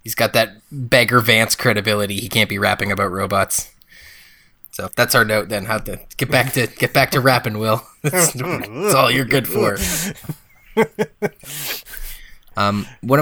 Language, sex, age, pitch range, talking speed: English, male, 20-39, 100-135 Hz, 155 wpm